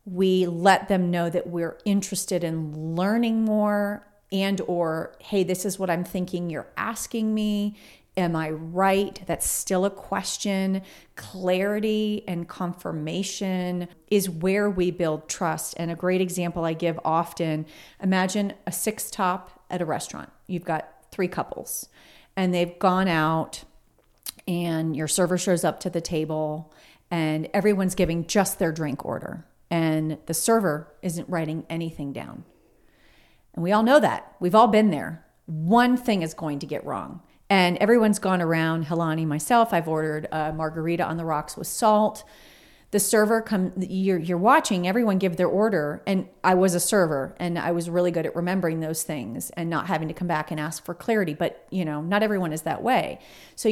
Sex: female